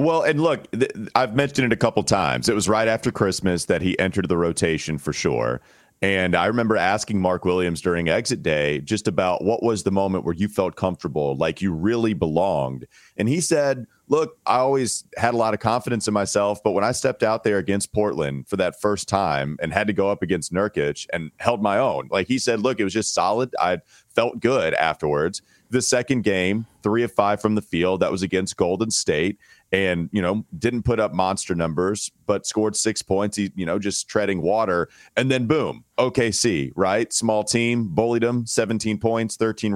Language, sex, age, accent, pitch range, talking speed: English, male, 30-49, American, 90-110 Hz, 205 wpm